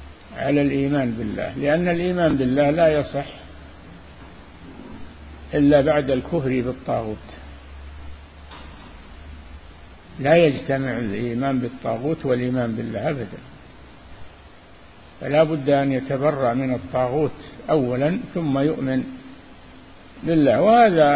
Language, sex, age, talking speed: Arabic, male, 50-69, 85 wpm